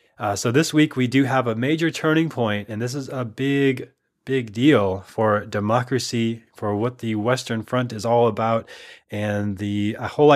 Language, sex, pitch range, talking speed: English, male, 105-125 Hz, 180 wpm